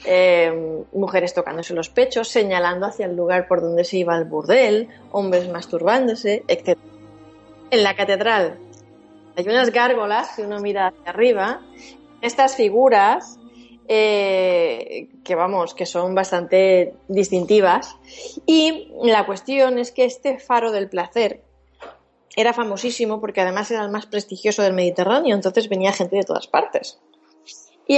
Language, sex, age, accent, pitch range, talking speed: Spanish, female, 20-39, Spanish, 175-230 Hz, 135 wpm